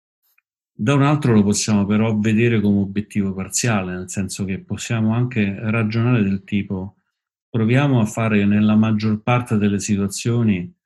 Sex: male